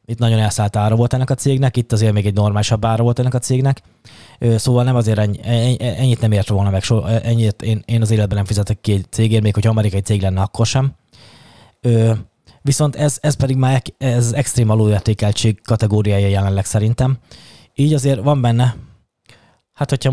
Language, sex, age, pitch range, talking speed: Hungarian, male, 20-39, 105-125 Hz, 180 wpm